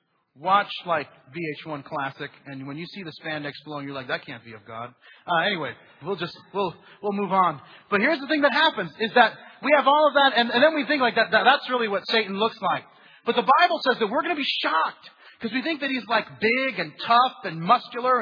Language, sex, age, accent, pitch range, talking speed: English, male, 30-49, American, 205-275 Hz, 245 wpm